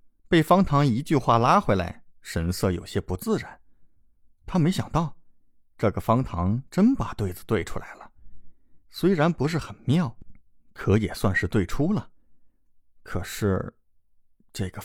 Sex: male